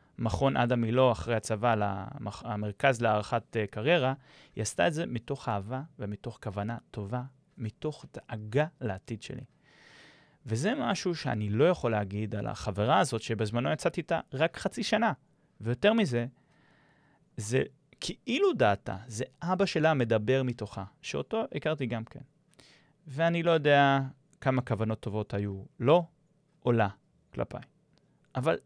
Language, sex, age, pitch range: Hebrew, male, 30-49, 115-155 Hz